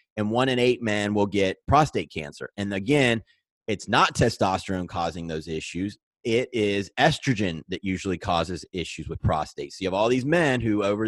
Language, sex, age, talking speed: English, male, 30-49, 185 wpm